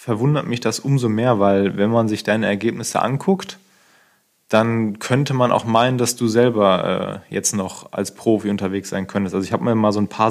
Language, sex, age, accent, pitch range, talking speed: German, male, 20-39, German, 105-125 Hz, 210 wpm